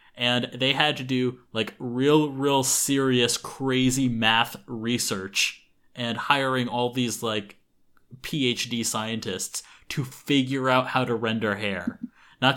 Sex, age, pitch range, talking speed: male, 20-39, 110-130 Hz, 125 wpm